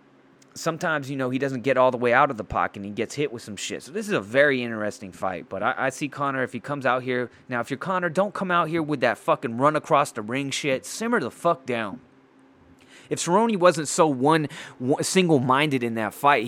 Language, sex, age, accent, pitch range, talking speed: English, male, 30-49, American, 115-140 Hz, 245 wpm